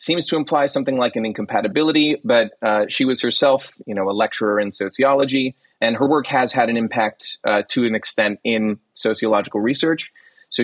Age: 30-49